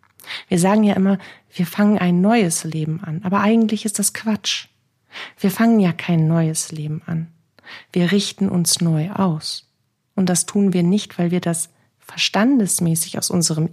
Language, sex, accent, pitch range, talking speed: German, female, German, 135-195 Hz, 165 wpm